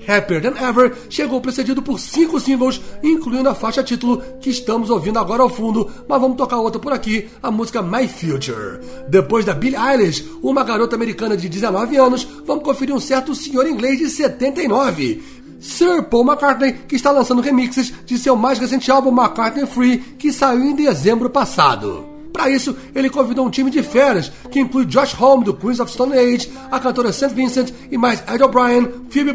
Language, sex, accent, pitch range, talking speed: English, male, Brazilian, 230-265 Hz, 185 wpm